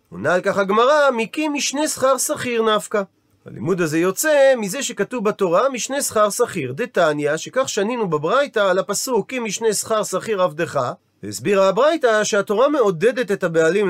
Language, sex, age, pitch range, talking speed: Hebrew, male, 40-59, 175-240 Hz, 150 wpm